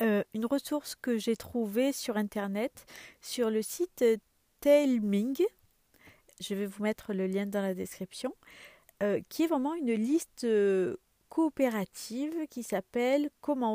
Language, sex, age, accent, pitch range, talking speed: French, female, 40-59, French, 205-265 Hz, 140 wpm